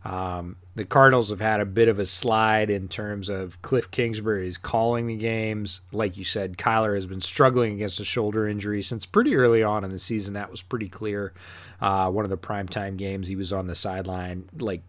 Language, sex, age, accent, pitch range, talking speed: English, male, 30-49, American, 95-120 Hz, 210 wpm